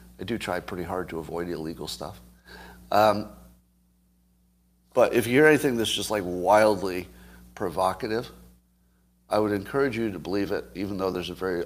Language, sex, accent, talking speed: English, male, American, 165 wpm